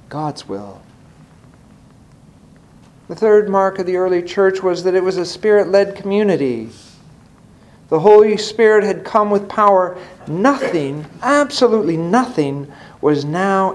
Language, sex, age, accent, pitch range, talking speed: English, male, 50-69, American, 145-195 Hz, 125 wpm